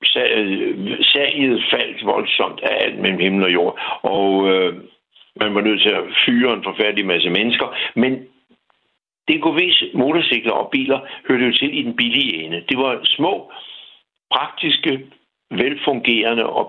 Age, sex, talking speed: 60-79, male, 145 wpm